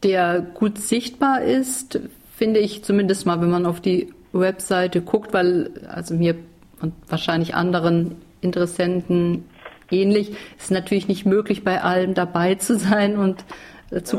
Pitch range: 175-210 Hz